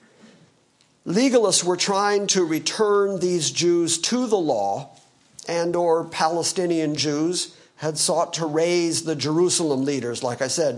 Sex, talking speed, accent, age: male, 135 wpm, American, 50-69